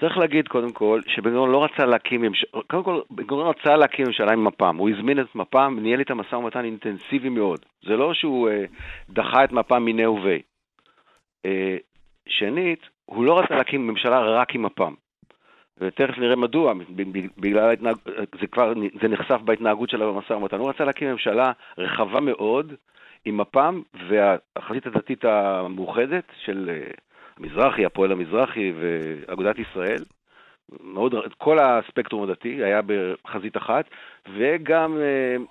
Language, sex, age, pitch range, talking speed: Hebrew, male, 50-69, 100-130 Hz, 145 wpm